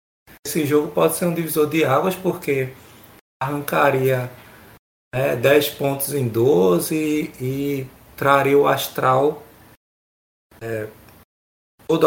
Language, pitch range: Portuguese, 120-160 Hz